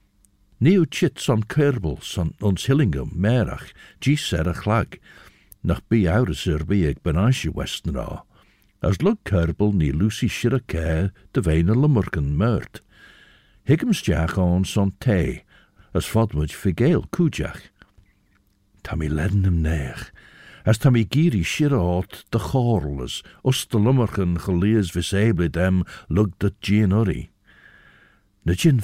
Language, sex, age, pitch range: English, male, 60-79, 90-125 Hz